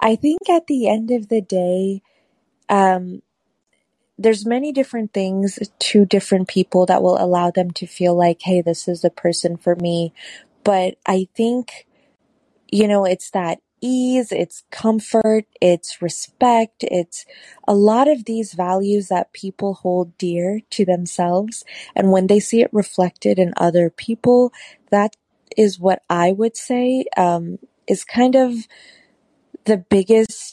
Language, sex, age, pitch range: English, female, 20-39, 175-215 Hz